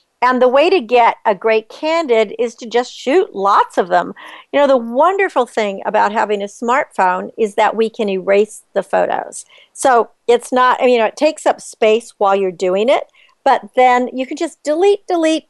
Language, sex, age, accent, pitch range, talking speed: English, female, 50-69, American, 215-270 Hz, 195 wpm